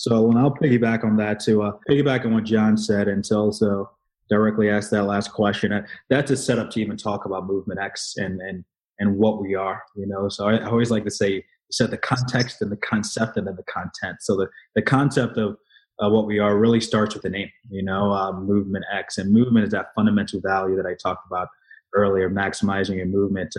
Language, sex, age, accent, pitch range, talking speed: English, male, 20-39, American, 95-110 Hz, 225 wpm